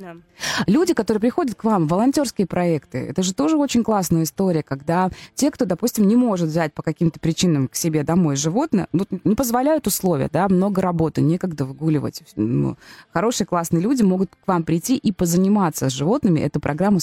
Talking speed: 170 wpm